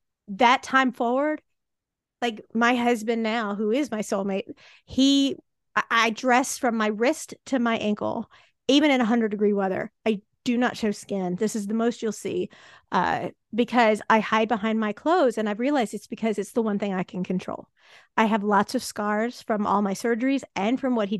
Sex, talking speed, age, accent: female, 190 wpm, 30-49, American